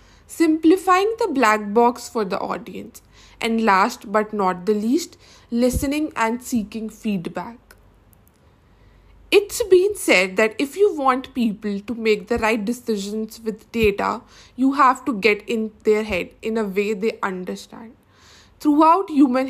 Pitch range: 210-275 Hz